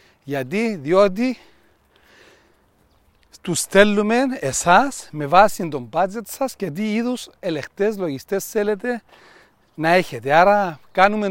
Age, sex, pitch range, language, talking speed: 40-59, male, 150-195 Hz, Greek, 105 wpm